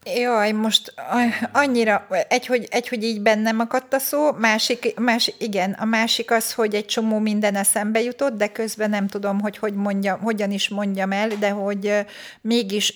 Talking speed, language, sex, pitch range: 170 wpm, Hungarian, female, 190-220 Hz